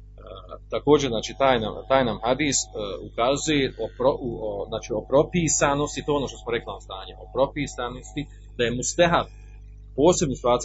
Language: Croatian